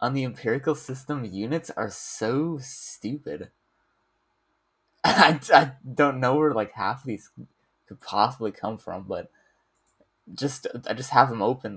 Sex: male